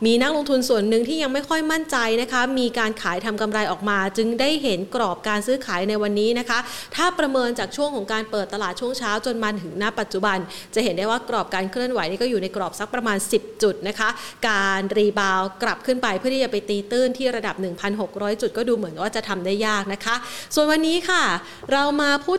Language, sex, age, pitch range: Thai, female, 30-49, 215-275 Hz